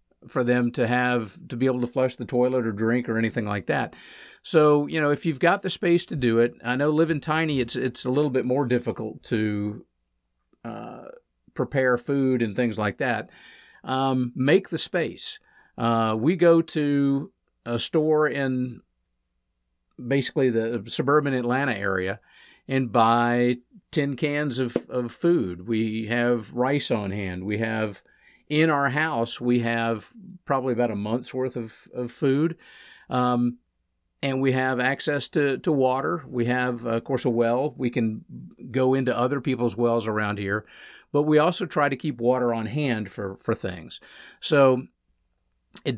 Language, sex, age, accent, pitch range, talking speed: English, male, 50-69, American, 115-145 Hz, 165 wpm